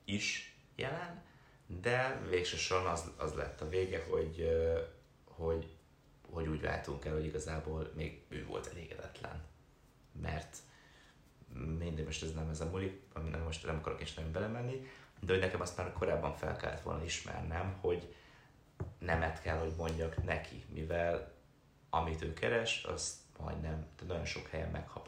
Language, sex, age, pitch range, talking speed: Hungarian, male, 30-49, 80-95 Hz, 145 wpm